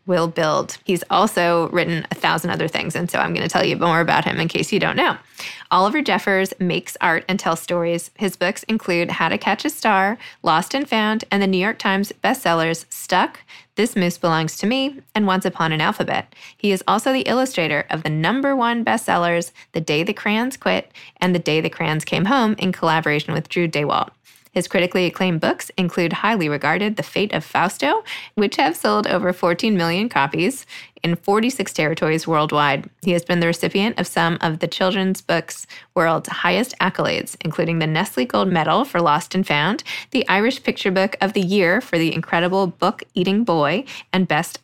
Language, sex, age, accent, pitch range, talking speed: English, female, 20-39, American, 165-205 Hz, 195 wpm